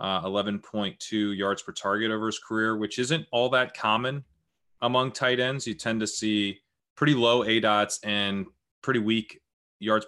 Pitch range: 100-125 Hz